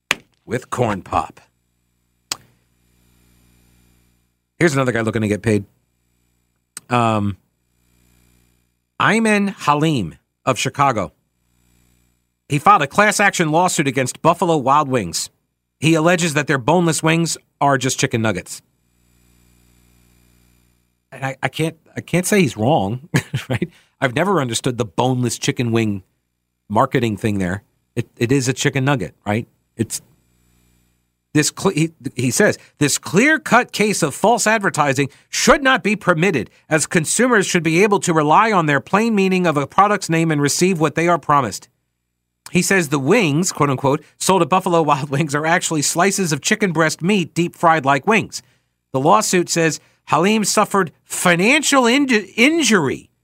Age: 50-69